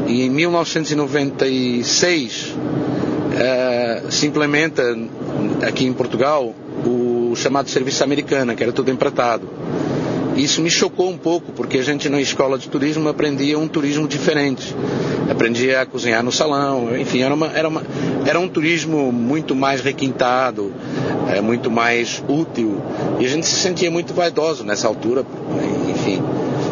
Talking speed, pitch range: 130 wpm, 120-155 Hz